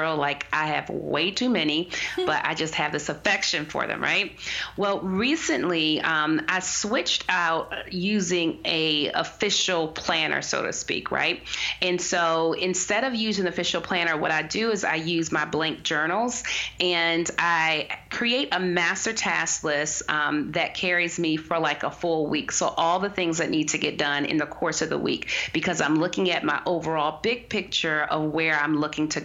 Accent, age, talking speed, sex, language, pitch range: American, 30-49, 185 wpm, female, English, 155-185 Hz